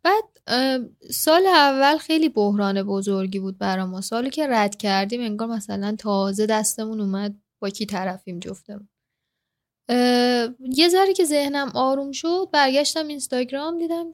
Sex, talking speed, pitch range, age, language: female, 125 wpm, 205-270 Hz, 10-29, Persian